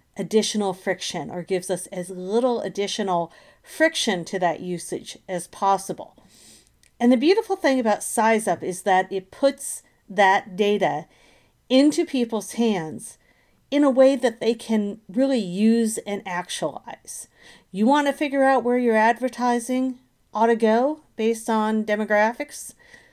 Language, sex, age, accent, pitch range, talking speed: English, female, 40-59, American, 195-265 Hz, 135 wpm